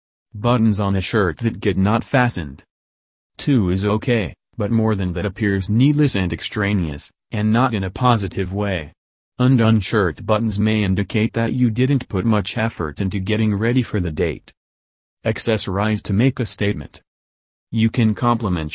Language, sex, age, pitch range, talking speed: English, male, 40-59, 90-115 Hz, 160 wpm